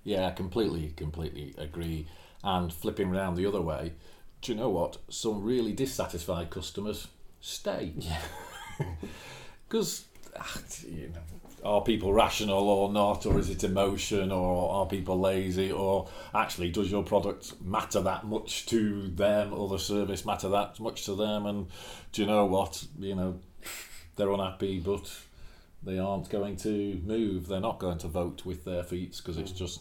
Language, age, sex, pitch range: English, 40-59, male, 80-100 Hz